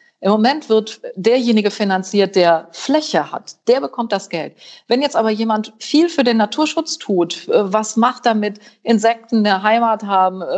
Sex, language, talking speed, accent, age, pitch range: female, German, 160 wpm, German, 40-59, 185-230 Hz